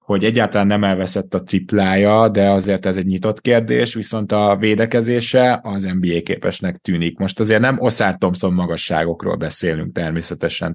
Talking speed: 140 wpm